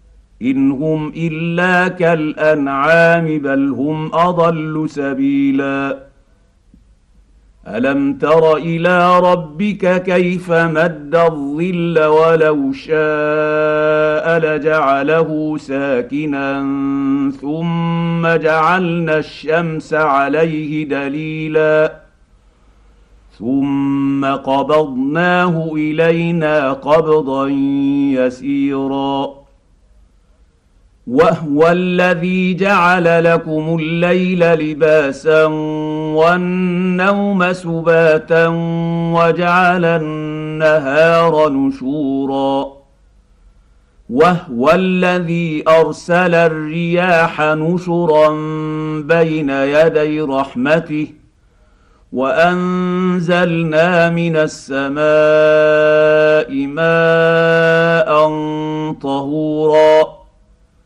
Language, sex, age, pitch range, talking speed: Arabic, male, 50-69, 140-165 Hz, 50 wpm